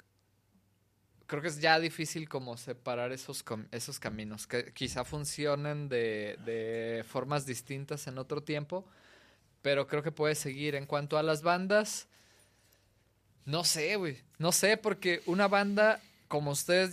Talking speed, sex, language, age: 140 wpm, male, Spanish, 20-39